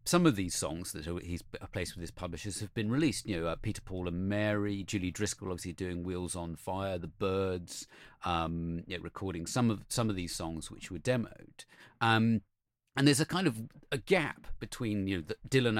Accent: British